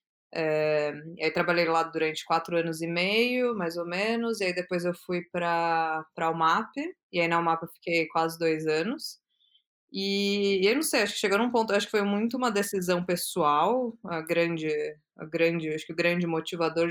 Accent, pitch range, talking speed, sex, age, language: Brazilian, 165-195 Hz, 195 wpm, female, 20-39, Portuguese